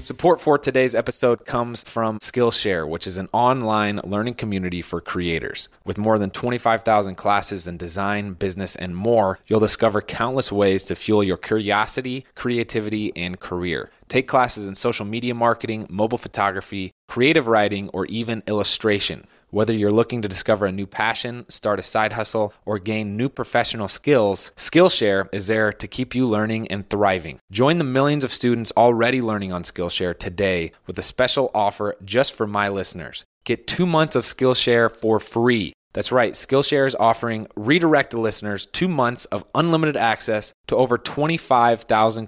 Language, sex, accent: English, male, American